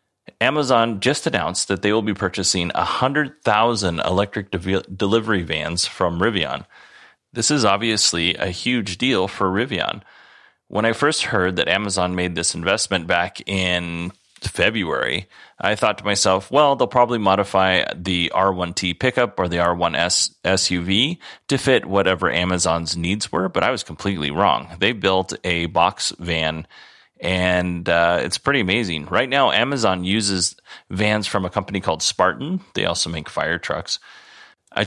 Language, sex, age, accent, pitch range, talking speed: English, male, 30-49, American, 90-105 Hz, 150 wpm